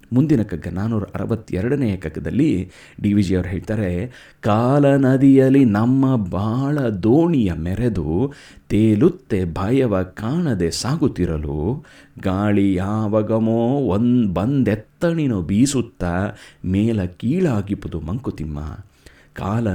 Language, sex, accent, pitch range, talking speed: Kannada, male, native, 95-135 Hz, 75 wpm